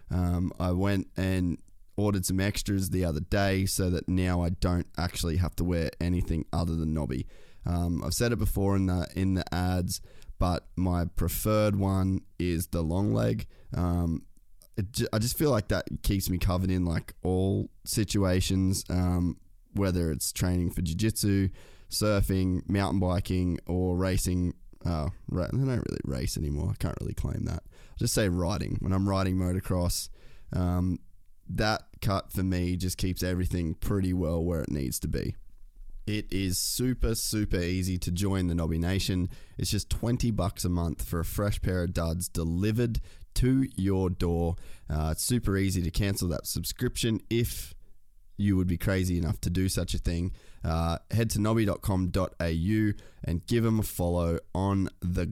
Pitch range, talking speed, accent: 85-100 Hz, 170 wpm, Australian